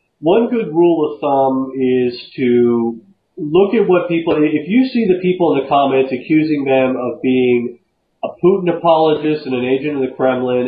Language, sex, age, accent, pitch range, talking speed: English, male, 40-59, American, 120-165 Hz, 180 wpm